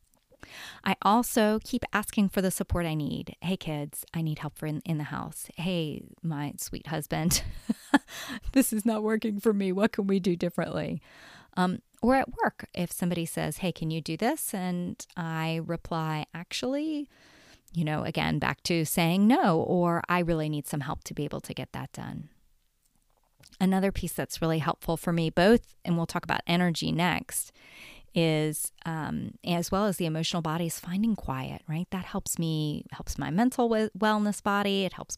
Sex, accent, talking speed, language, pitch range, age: female, American, 180 wpm, English, 155-200 Hz, 30-49